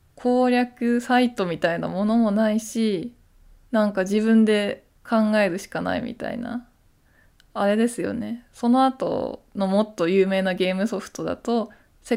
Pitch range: 185-235 Hz